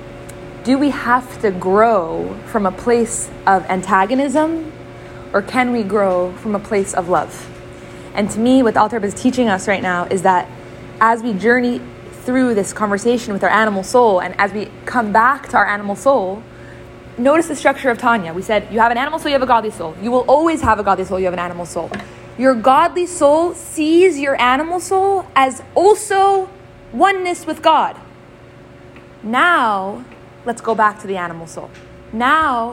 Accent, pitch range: American, 200-280 Hz